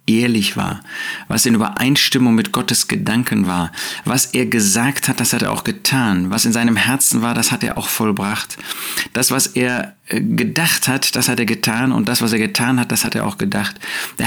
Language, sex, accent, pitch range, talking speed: German, male, German, 100-130 Hz, 205 wpm